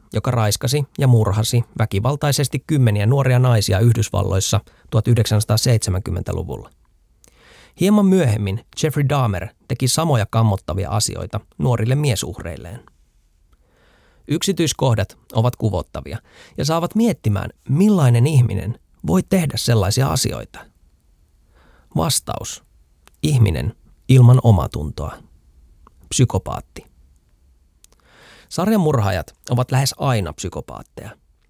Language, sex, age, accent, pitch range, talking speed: Finnish, male, 30-49, native, 95-140 Hz, 80 wpm